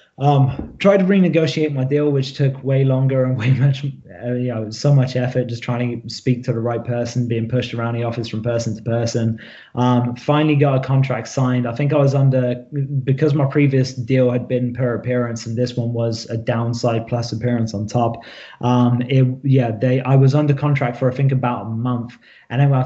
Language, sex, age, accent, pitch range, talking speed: English, male, 20-39, British, 120-135 Hz, 215 wpm